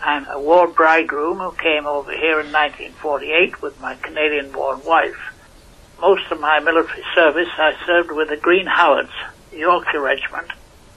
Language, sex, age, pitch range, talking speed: English, male, 60-79, 150-170 Hz, 155 wpm